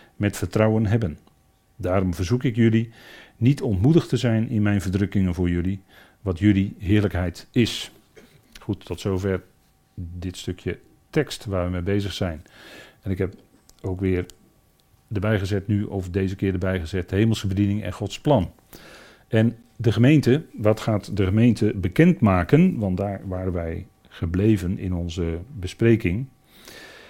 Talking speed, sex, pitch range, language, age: 145 wpm, male, 95-115 Hz, Dutch, 40-59